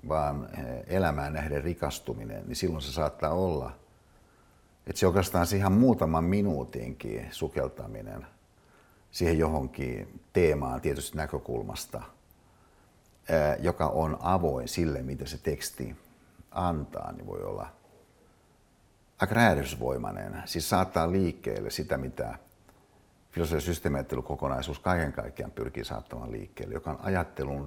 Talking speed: 105 wpm